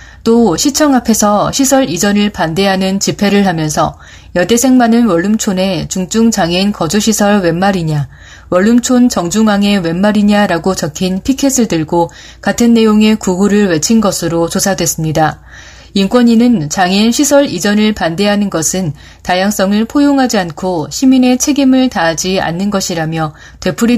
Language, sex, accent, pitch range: Korean, female, native, 180-235 Hz